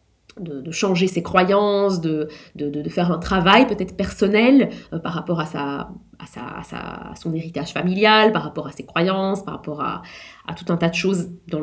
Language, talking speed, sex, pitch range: French, 210 wpm, female, 170-220 Hz